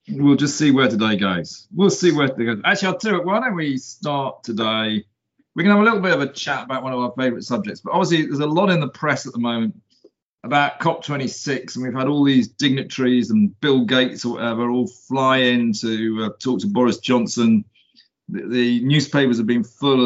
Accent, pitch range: British, 120-150 Hz